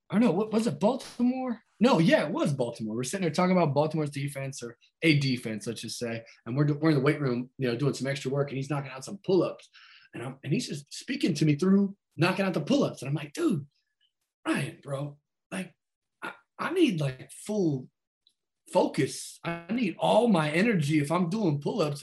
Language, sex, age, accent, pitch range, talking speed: English, male, 20-39, American, 140-195 Hz, 215 wpm